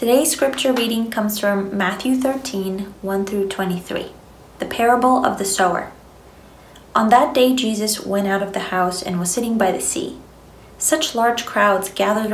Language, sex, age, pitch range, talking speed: English, female, 20-39, 195-235 Hz, 165 wpm